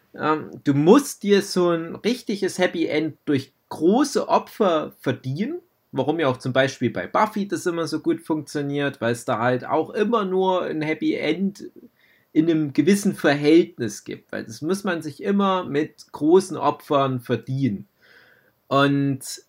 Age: 30-49